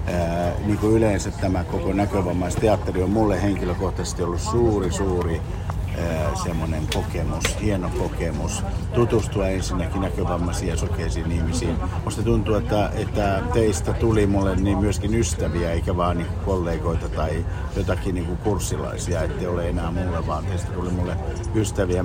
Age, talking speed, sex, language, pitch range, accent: 50-69, 145 wpm, male, Finnish, 90-105 Hz, native